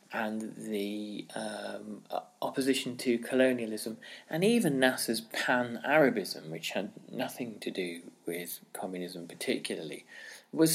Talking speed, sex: 105 wpm, male